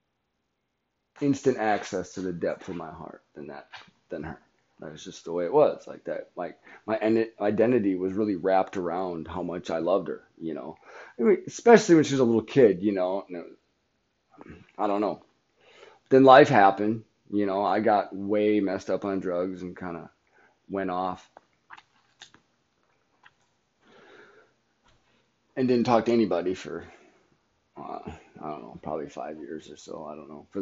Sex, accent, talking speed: male, American, 175 wpm